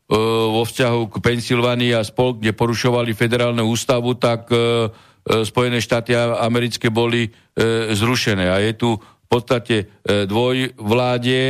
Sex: male